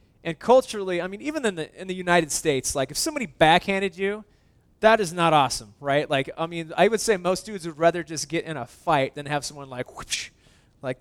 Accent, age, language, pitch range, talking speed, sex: American, 20-39, English, 135-170 Hz, 230 wpm, male